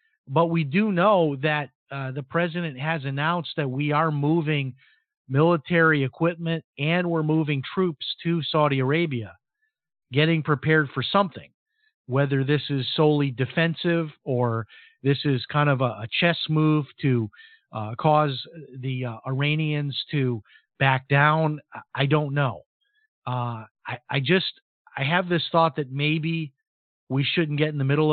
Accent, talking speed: American, 145 wpm